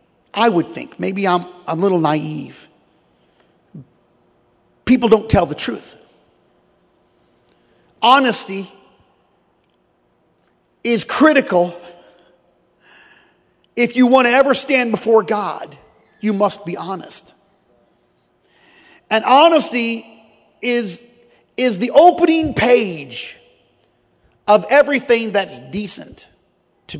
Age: 40-59